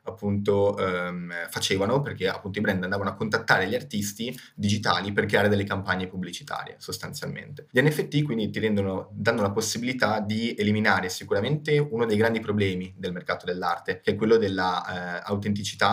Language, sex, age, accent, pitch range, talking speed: Italian, male, 20-39, native, 95-115 Hz, 155 wpm